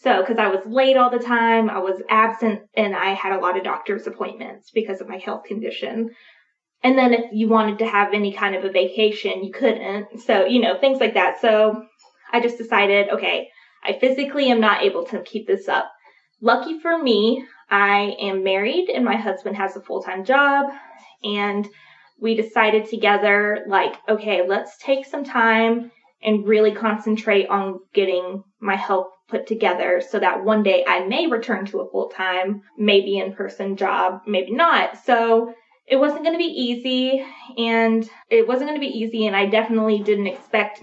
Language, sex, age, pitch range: English, female, 20-39, 200-240 Hz